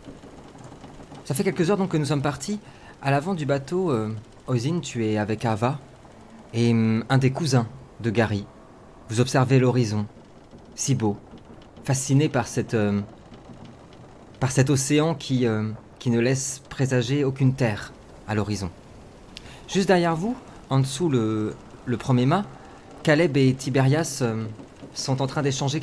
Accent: French